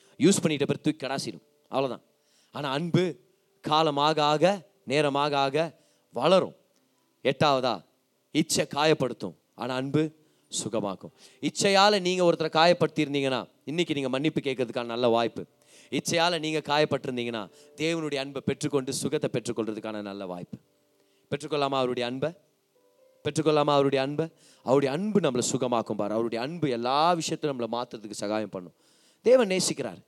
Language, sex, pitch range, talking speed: Tamil, male, 120-160 Hz, 45 wpm